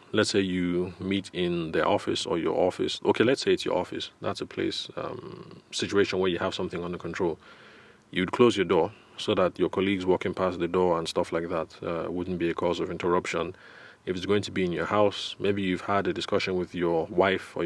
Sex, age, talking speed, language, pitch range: male, 30-49, 230 wpm, English, 90-100 Hz